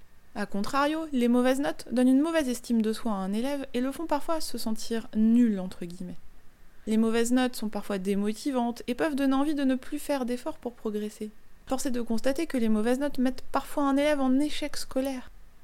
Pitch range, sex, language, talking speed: 215-275 Hz, female, French, 220 wpm